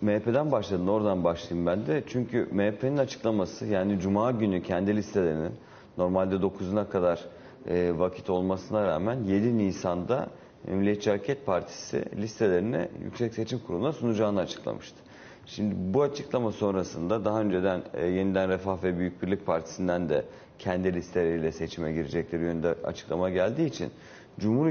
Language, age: Turkish, 40-59